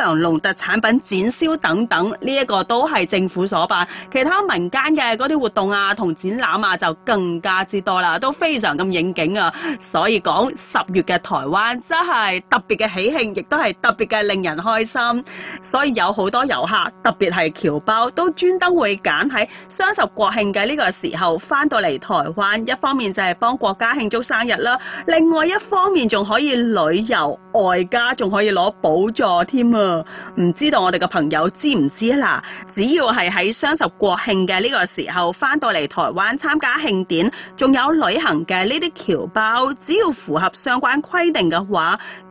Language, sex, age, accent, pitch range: Chinese, female, 30-49, native, 185-280 Hz